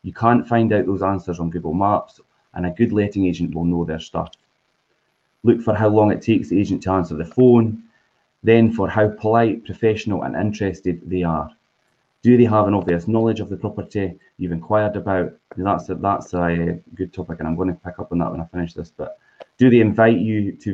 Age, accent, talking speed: 20-39, British, 215 wpm